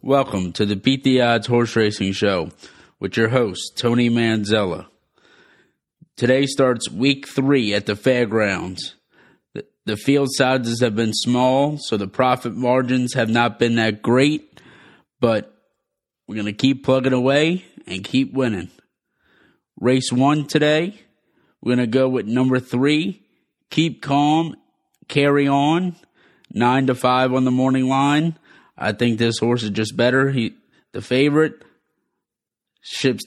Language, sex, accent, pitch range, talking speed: English, male, American, 120-140 Hz, 140 wpm